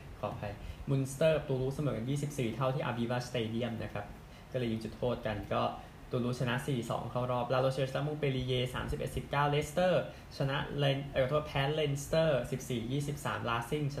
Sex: male